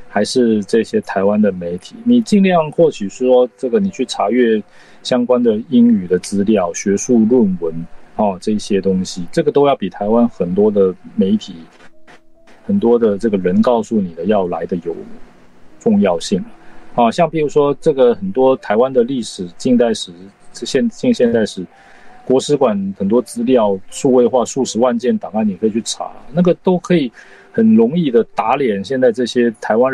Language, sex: Chinese, male